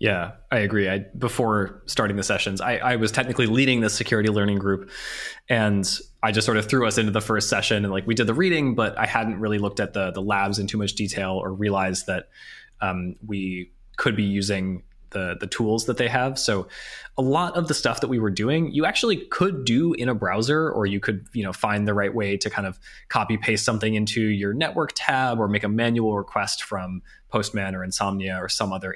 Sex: male